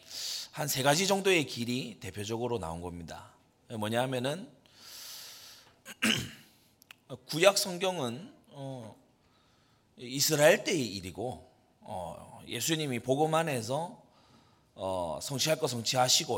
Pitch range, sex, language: 105-145 Hz, male, Korean